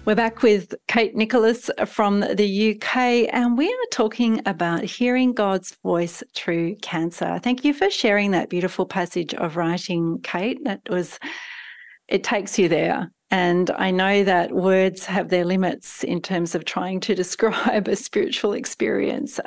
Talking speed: 155 wpm